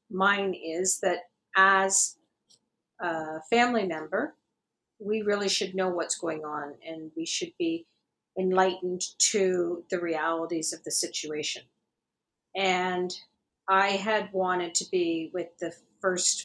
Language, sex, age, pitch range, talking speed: English, female, 50-69, 170-200 Hz, 125 wpm